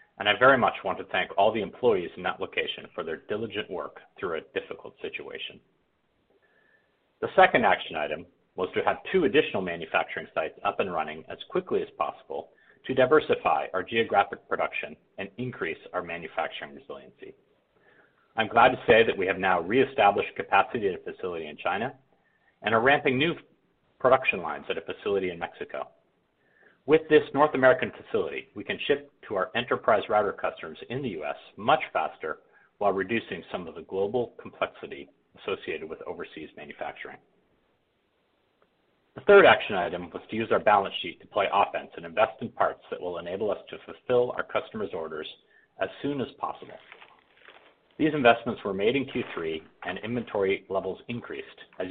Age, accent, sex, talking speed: 50-69, American, male, 170 wpm